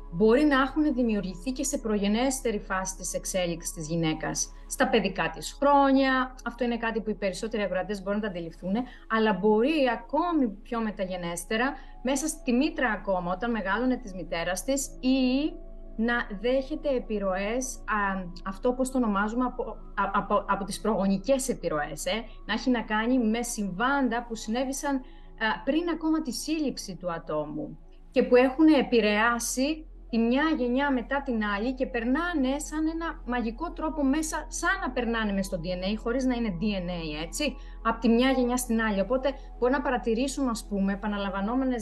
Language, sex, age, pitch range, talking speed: Greek, female, 30-49, 195-260 Hz, 130 wpm